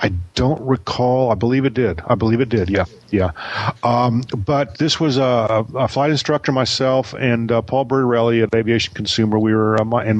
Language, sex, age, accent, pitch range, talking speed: English, male, 50-69, American, 110-125 Hz, 200 wpm